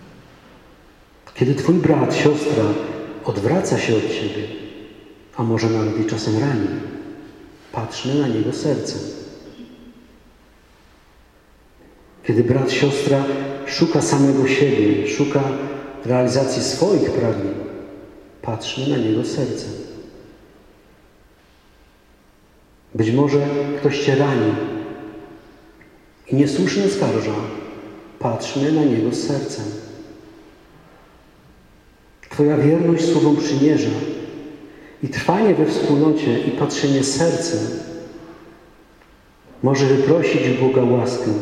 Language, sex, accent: Polish, male, native